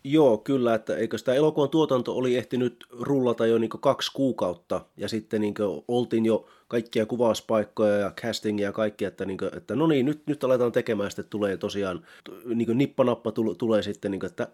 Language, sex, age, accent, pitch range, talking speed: Finnish, male, 30-49, native, 105-130 Hz, 205 wpm